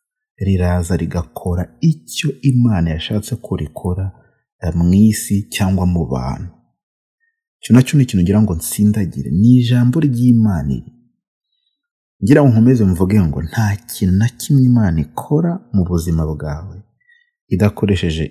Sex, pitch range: male, 90-125 Hz